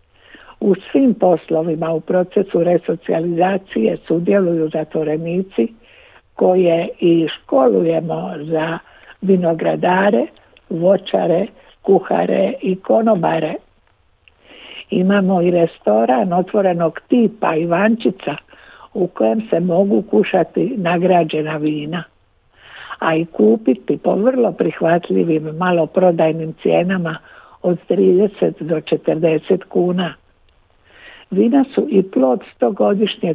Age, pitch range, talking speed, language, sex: 60-79, 160-195 Hz, 85 wpm, Croatian, female